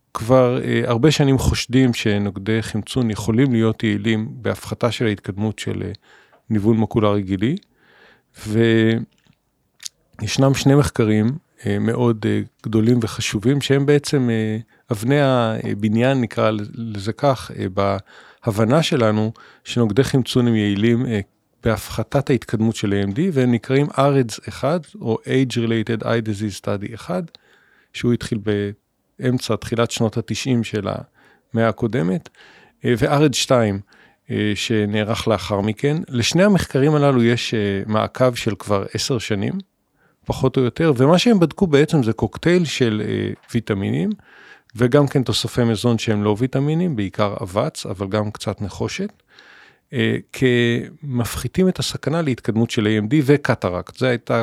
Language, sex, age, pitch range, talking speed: English, male, 40-59, 110-135 Hz, 110 wpm